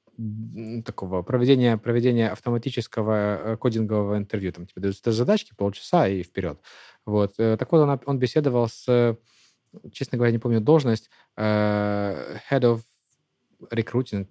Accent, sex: native, male